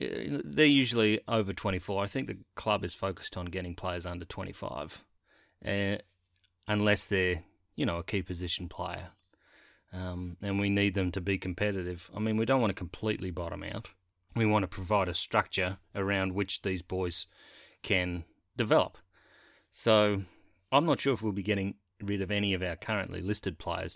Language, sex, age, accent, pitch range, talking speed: English, male, 30-49, Australian, 90-105 Hz, 170 wpm